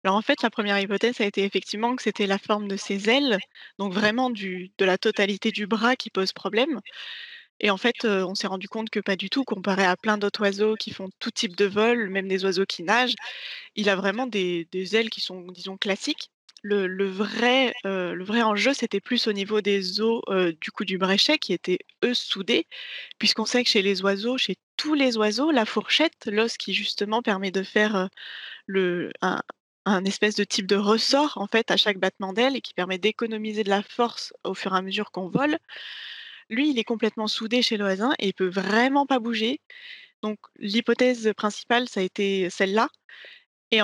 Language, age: French, 20-39